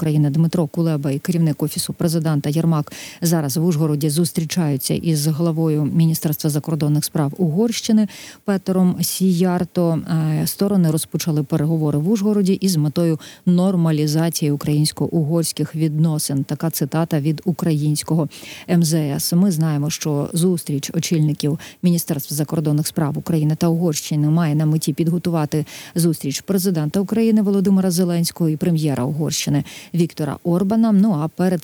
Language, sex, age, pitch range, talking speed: Ukrainian, female, 40-59, 150-175 Hz, 120 wpm